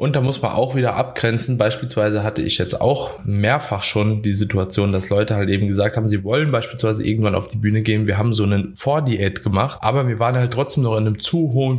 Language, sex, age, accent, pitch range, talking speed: German, male, 20-39, German, 105-130 Hz, 235 wpm